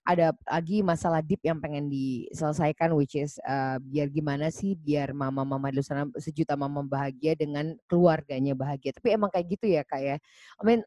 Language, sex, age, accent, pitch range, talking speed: Indonesian, female, 10-29, native, 150-210 Hz, 175 wpm